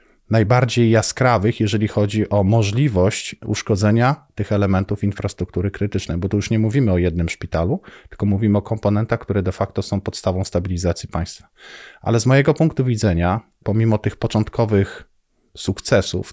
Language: Polish